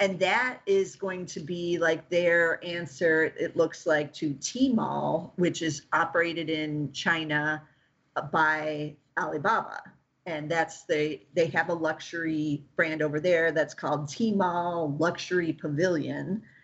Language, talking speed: English, 130 wpm